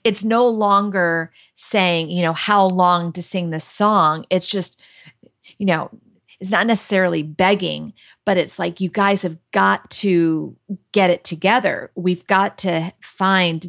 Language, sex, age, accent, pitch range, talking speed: English, female, 40-59, American, 170-200 Hz, 155 wpm